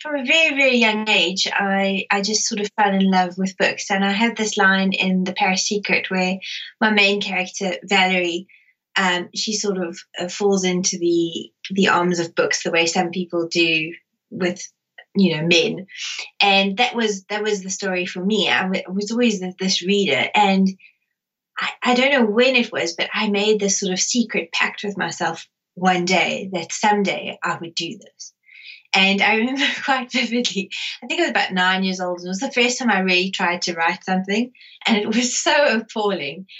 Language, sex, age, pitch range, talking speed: English, female, 20-39, 185-225 Hz, 200 wpm